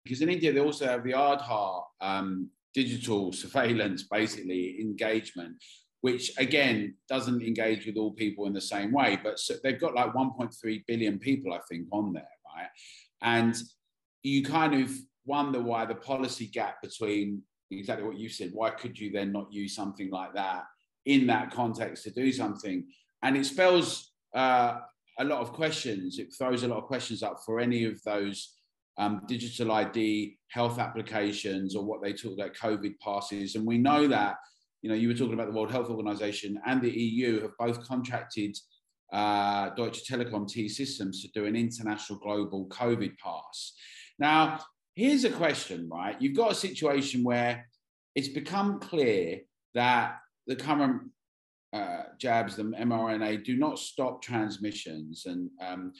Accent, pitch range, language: British, 105-135 Hz, English